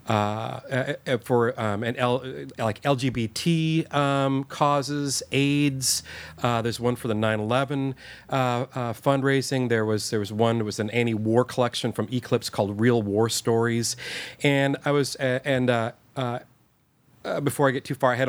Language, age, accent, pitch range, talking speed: English, 40-59, American, 115-140 Hz, 160 wpm